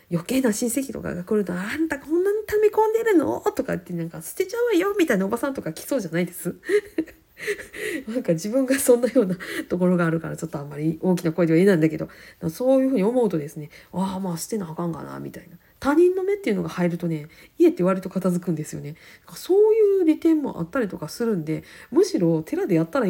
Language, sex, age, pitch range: Japanese, female, 40-59, 165-230 Hz